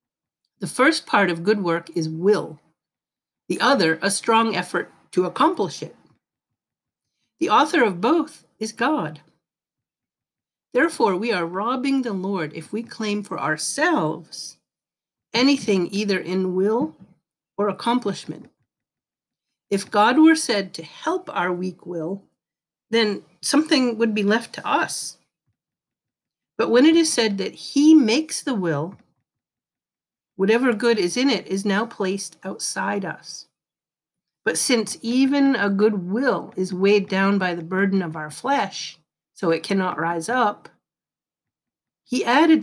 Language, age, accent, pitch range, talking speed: English, 50-69, American, 180-235 Hz, 135 wpm